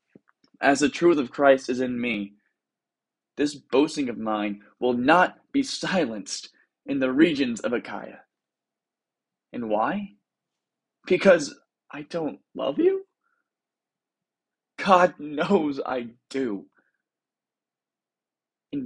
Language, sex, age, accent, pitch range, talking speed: English, male, 20-39, American, 115-180 Hz, 105 wpm